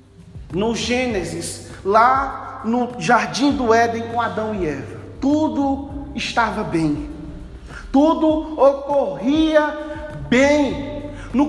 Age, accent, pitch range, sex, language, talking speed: 40-59, Brazilian, 245-310 Hz, male, Portuguese, 95 wpm